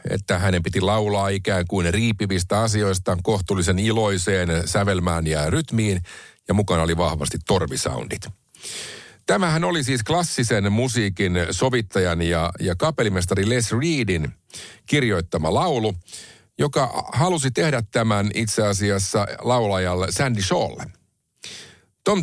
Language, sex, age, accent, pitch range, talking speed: Finnish, male, 50-69, native, 95-120 Hz, 110 wpm